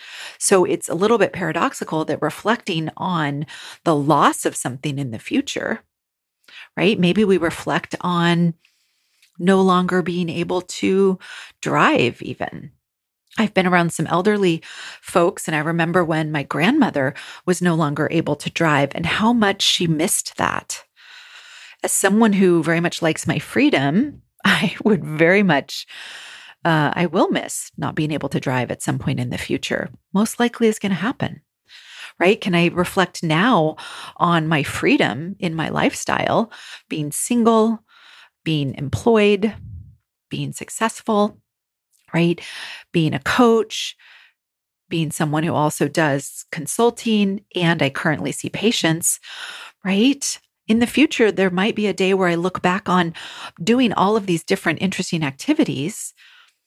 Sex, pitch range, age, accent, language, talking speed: female, 160-220 Hz, 40-59, American, English, 145 wpm